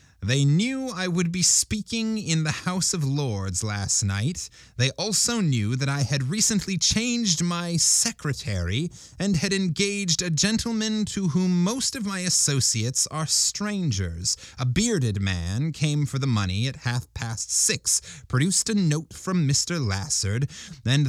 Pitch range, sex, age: 100-155 Hz, male, 30-49